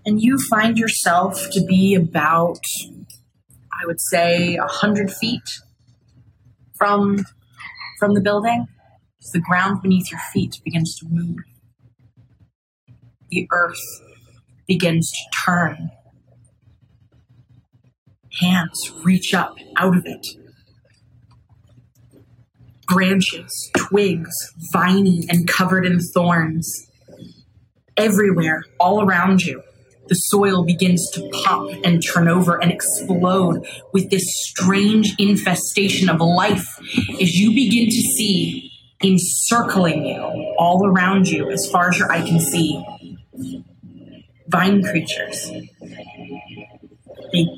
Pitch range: 145-195 Hz